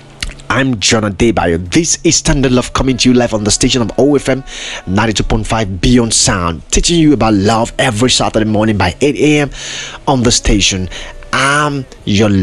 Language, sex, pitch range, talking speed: English, male, 110-155 Hz, 165 wpm